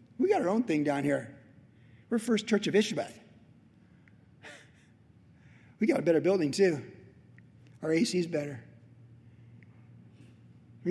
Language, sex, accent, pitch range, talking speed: English, male, American, 125-195 Hz, 125 wpm